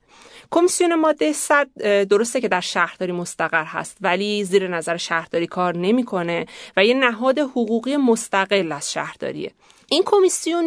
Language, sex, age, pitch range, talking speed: Persian, female, 30-49, 190-285 Hz, 135 wpm